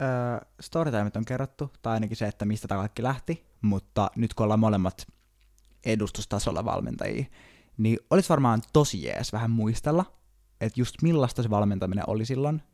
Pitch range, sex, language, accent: 100-120 Hz, male, Finnish, native